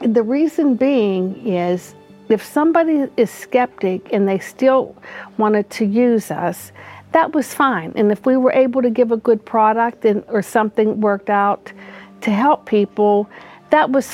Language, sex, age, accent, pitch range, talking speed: English, female, 50-69, American, 200-255 Hz, 160 wpm